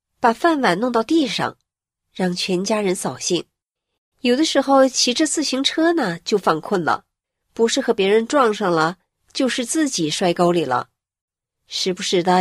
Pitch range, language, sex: 170-235 Hz, Chinese, female